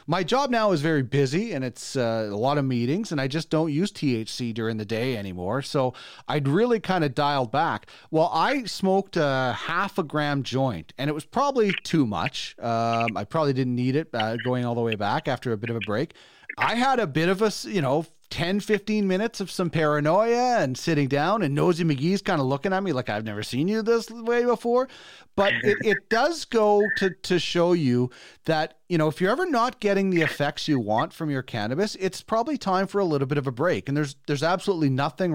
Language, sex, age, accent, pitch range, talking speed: English, male, 30-49, American, 135-200 Hz, 225 wpm